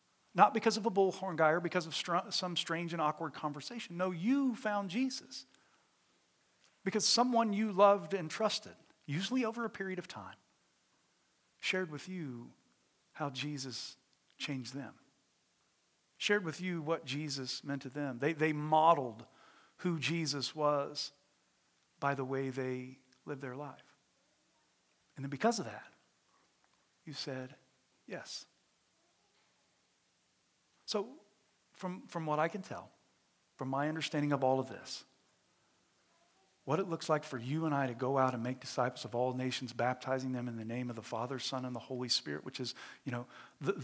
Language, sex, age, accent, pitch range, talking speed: English, male, 50-69, American, 130-170 Hz, 160 wpm